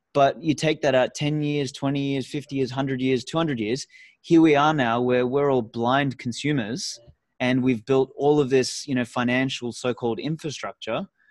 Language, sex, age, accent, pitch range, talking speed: English, male, 20-39, Australian, 125-155 Hz, 185 wpm